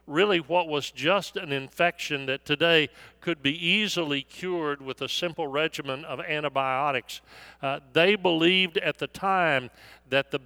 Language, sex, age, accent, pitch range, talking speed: English, male, 50-69, American, 140-185 Hz, 150 wpm